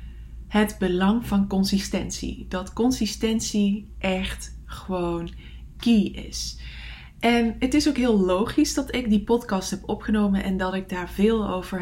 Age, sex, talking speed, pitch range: 20-39, female, 140 wpm, 175-225 Hz